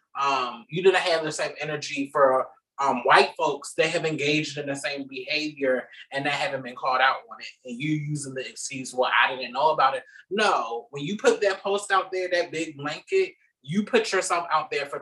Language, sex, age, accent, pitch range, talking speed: English, male, 20-39, American, 135-165 Hz, 215 wpm